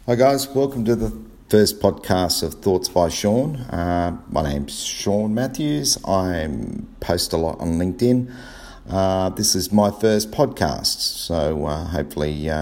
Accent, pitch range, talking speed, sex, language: Australian, 80-95 Hz, 150 wpm, male, English